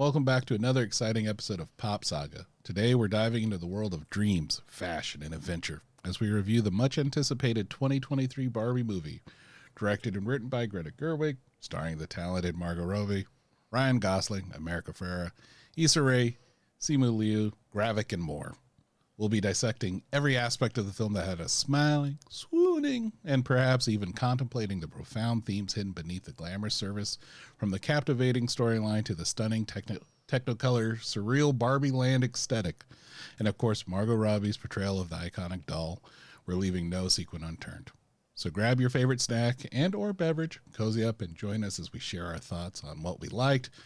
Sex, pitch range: male, 95-130 Hz